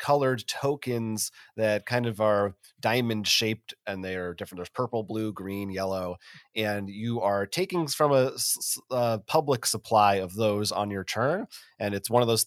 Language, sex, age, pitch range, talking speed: English, male, 30-49, 105-125 Hz, 175 wpm